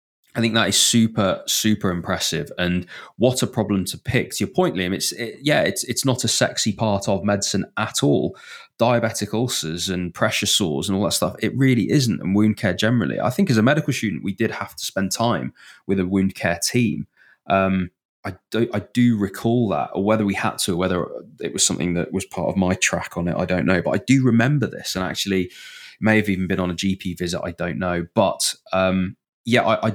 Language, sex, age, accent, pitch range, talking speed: English, male, 20-39, British, 95-125 Hz, 230 wpm